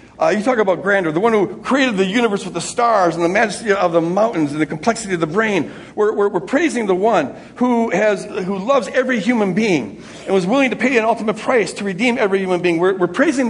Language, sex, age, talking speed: English, male, 60-79, 245 wpm